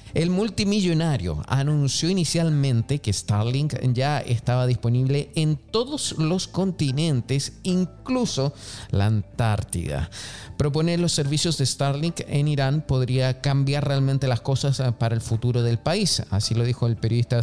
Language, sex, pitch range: Spanish, male, 115-145 Hz